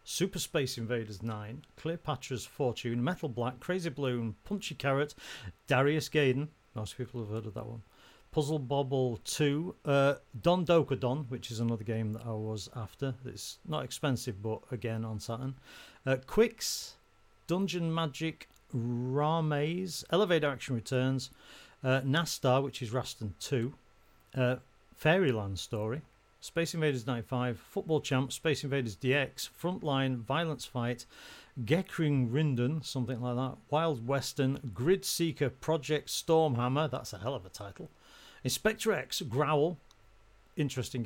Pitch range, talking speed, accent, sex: 120-155 Hz, 135 wpm, British, male